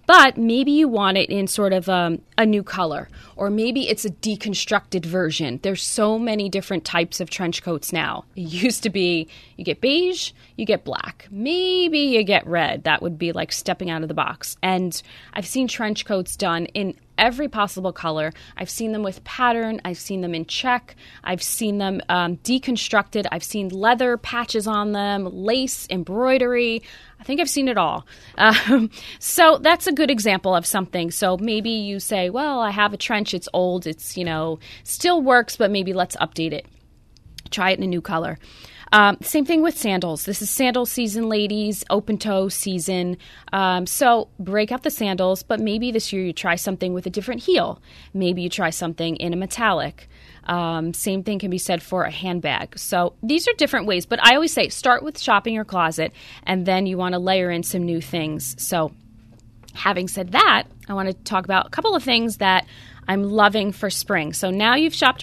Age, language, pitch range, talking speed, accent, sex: 20-39, English, 175-225 Hz, 200 wpm, American, female